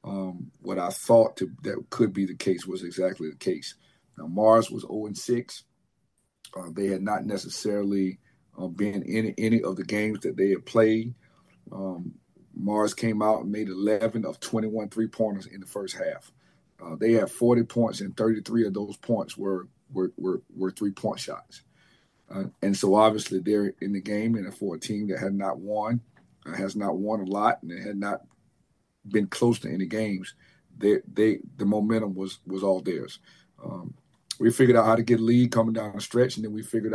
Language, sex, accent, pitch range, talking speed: English, male, American, 95-110 Hz, 190 wpm